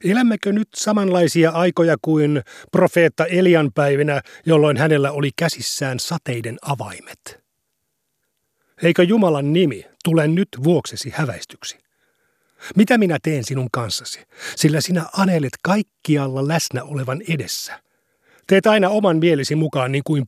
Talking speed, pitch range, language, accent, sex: 120 wpm, 130-175 Hz, Finnish, native, male